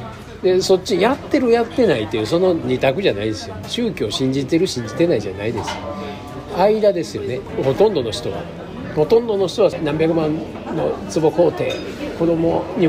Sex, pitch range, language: male, 130-180 Hz, Japanese